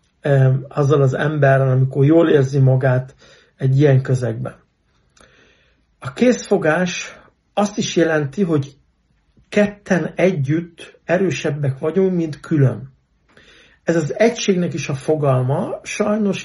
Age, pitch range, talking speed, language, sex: 60-79, 135-170 Hz, 105 wpm, Hungarian, male